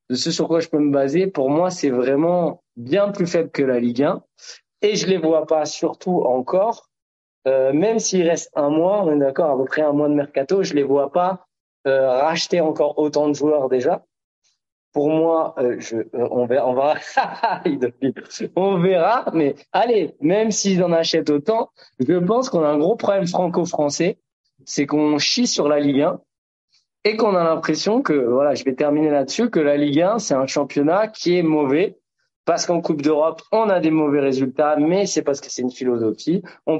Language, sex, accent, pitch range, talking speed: French, male, French, 140-180 Hz, 200 wpm